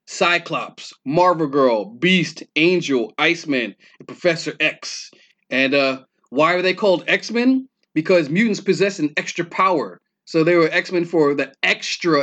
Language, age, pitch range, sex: English, 30-49, 140-175 Hz, male